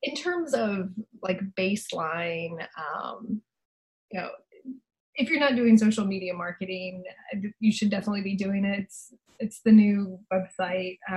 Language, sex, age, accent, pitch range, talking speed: English, female, 20-39, American, 180-220 Hz, 140 wpm